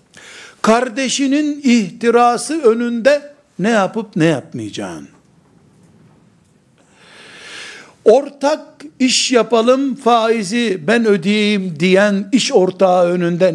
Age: 60-79